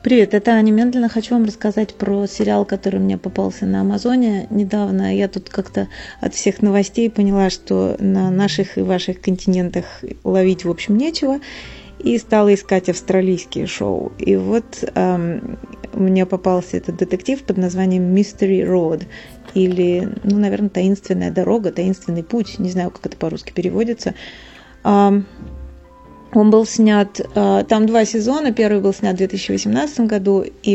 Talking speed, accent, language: 145 wpm, native, Russian